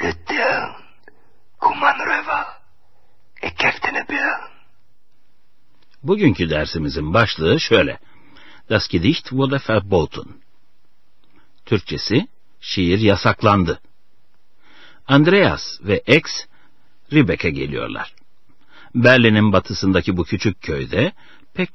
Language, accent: Turkish, native